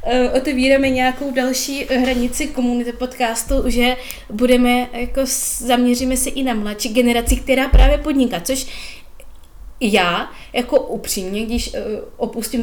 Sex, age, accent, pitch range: female, 20-39, native, 220-255 Hz